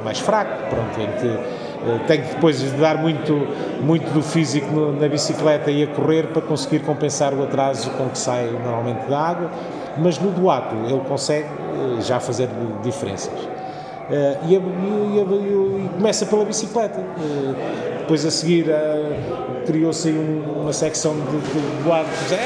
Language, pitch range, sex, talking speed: Portuguese, 135-170 Hz, male, 130 wpm